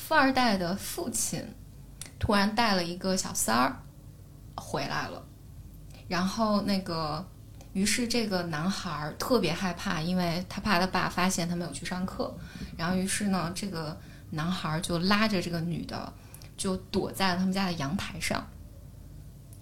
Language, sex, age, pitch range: Chinese, female, 20-39, 170-205 Hz